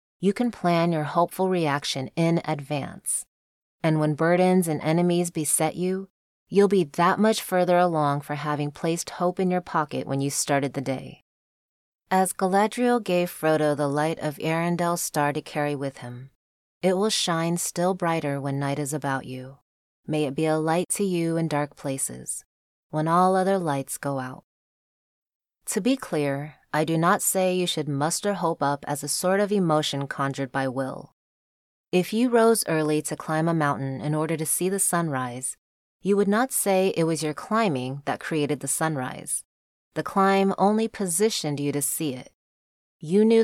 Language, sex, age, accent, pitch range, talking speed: English, female, 20-39, American, 140-180 Hz, 175 wpm